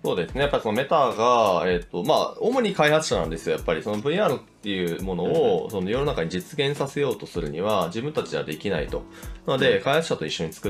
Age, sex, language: 20-39, male, Japanese